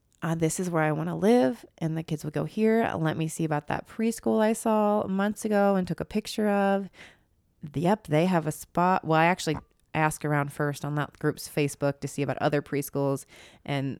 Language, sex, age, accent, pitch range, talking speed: English, female, 20-39, American, 145-175 Hz, 215 wpm